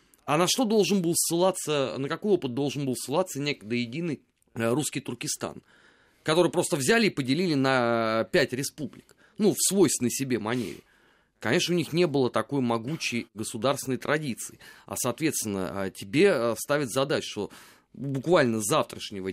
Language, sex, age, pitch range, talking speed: Russian, male, 30-49, 120-175 Hz, 145 wpm